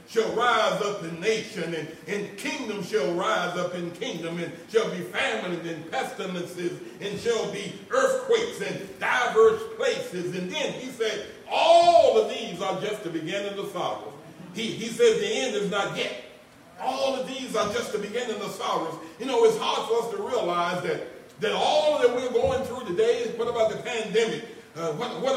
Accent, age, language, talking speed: American, 60-79, English, 195 wpm